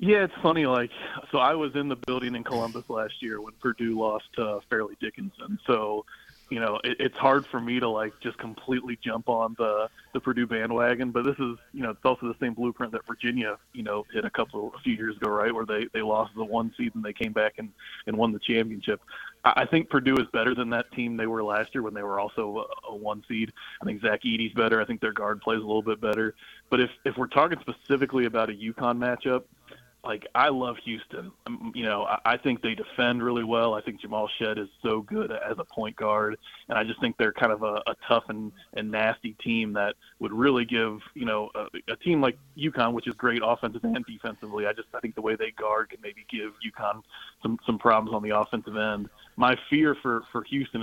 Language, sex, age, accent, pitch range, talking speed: English, male, 20-39, American, 110-125 Hz, 240 wpm